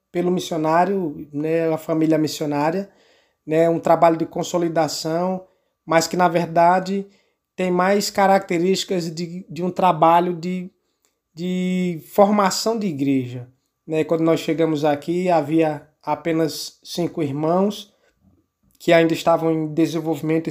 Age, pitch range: 20-39, 155-180 Hz